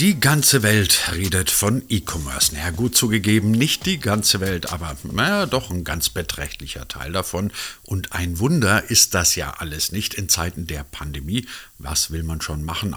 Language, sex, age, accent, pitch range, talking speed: German, male, 50-69, German, 80-105 Hz, 175 wpm